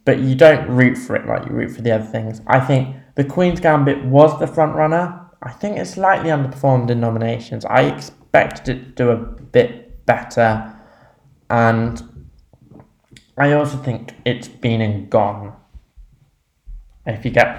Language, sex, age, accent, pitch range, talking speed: English, male, 10-29, British, 110-135 Hz, 165 wpm